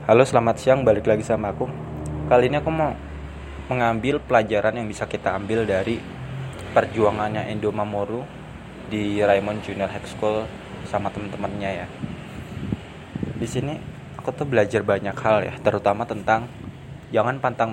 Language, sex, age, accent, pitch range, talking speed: Indonesian, male, 20-39, native, 100-125 Hz, 140 wpm